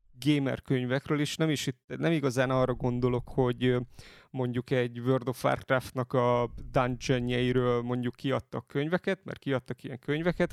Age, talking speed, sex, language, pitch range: 30-49, 135 wpm, male, Hungarian, 120-140 Hz